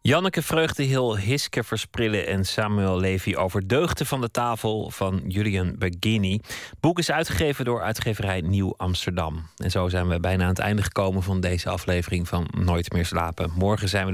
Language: Dutch